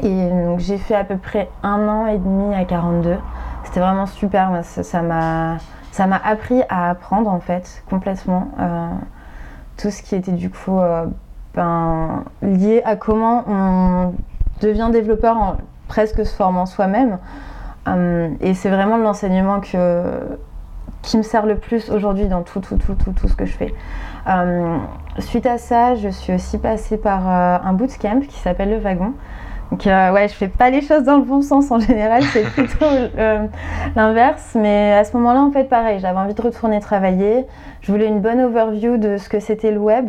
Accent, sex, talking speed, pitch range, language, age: French, female, 180 wpm, 180-220 Hz, French, 20-39